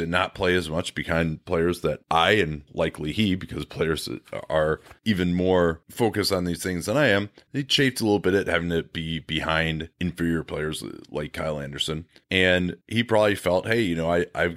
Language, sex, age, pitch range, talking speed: English, male, 30-49, 80-100 Hz, 200 wpm